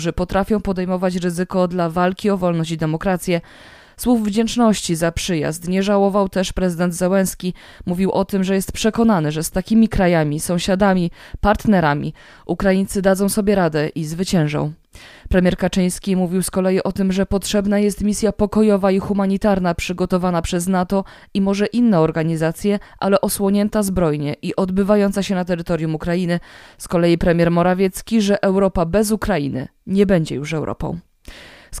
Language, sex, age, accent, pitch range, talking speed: Polish, female, 20-39, native, 170-205 Hz, 150 wpm